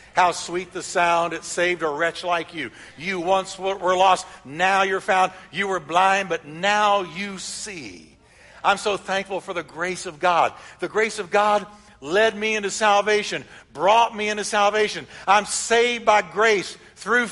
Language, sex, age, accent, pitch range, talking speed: English, male, 60-79, American, 170-215 Hz, 170 wpm